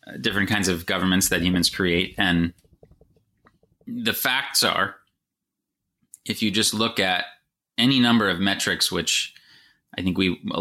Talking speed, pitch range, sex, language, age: 145 wpm, 85-110 Hz, male, English, 30-49